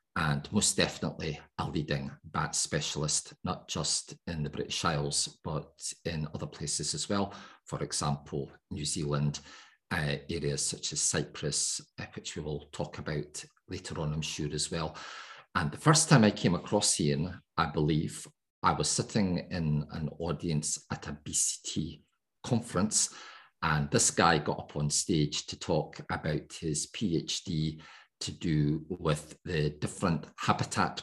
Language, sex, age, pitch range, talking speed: English, male, 50-69, 75-80 Hz, 150 wpm